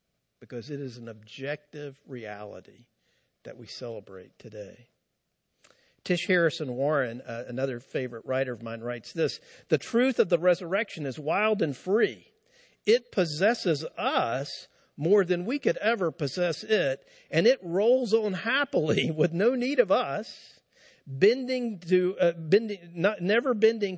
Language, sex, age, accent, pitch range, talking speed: English, male, 50-69, American, 155-225 Hz, 145 wpm